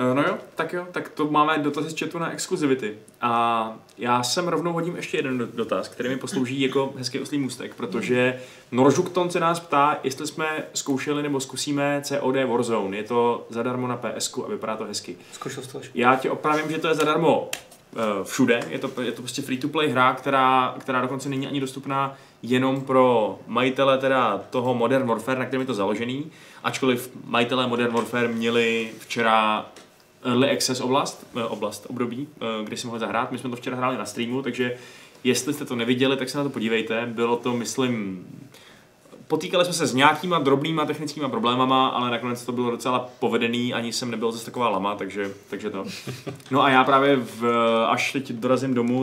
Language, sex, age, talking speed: Czech, male, 20-39, 185 wpm